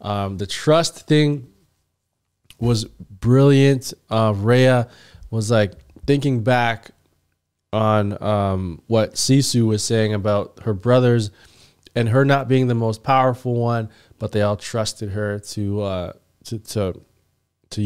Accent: American